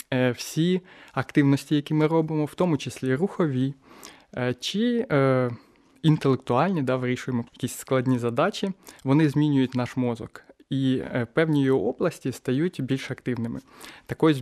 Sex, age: male, 20-39